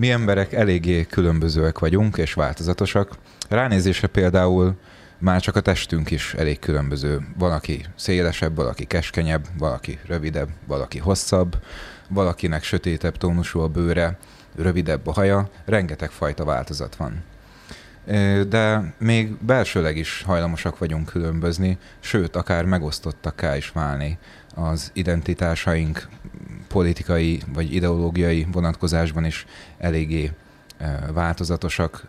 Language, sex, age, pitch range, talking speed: Hungarian, male, 30-49, 80-95 Hz, 110 wpm